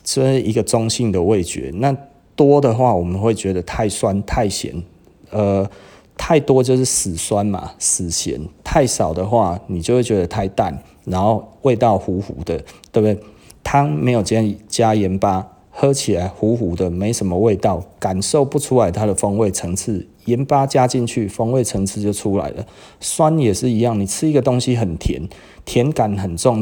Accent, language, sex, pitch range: native, Chinese, male, 95-125 Hz